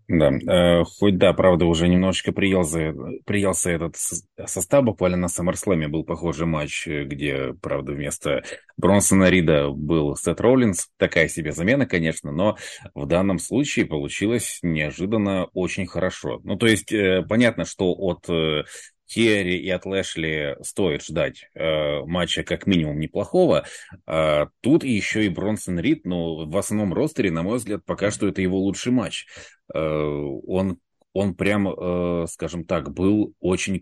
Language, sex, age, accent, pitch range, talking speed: Russian, male, 30-49, native, 80-95 Hz, 145 wpm